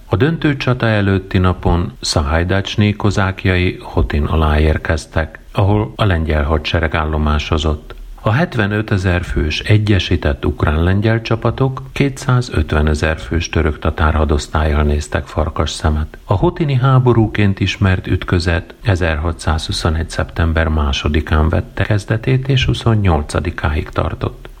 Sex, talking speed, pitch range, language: male, 110 wpm, 80-110 Hz, Hungarian